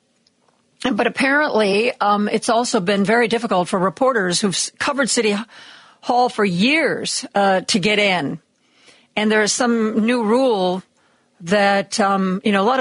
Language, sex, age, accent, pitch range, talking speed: English, female, 50-69, American, 195-255 Hz, 150 wpm